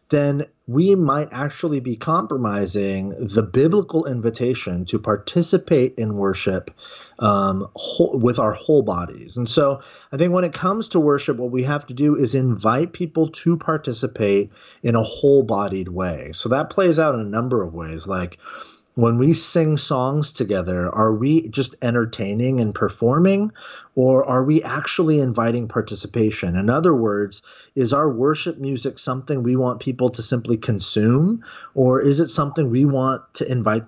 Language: English